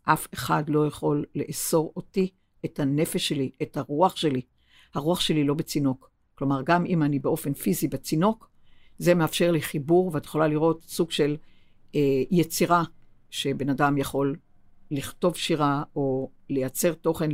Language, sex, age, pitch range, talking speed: Hebrew, female, 60-79, 140-175 Hz, 145 wpm